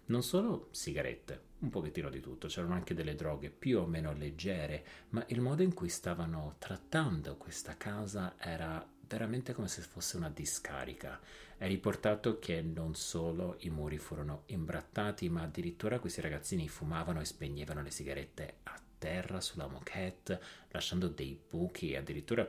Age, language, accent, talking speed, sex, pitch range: 30-49, Italian, native, 155 wpm, male, 80-105 Hz